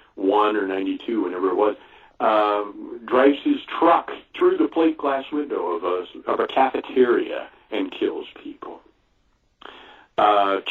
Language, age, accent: English, 40-59, American